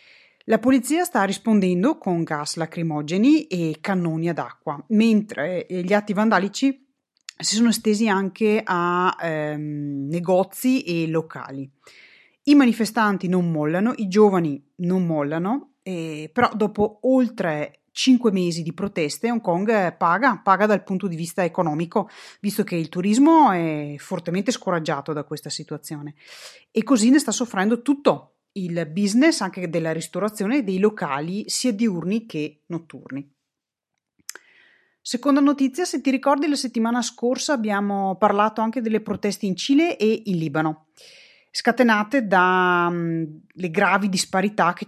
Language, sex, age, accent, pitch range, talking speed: Italian, female, 30-49, native, 170-230 Hz, 130 wpm